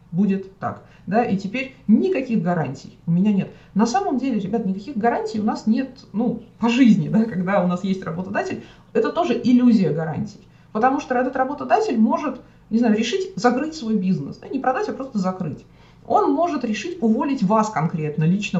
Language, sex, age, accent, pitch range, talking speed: Russian, female, 30-49, native, 180-230 Hz, 180 wpm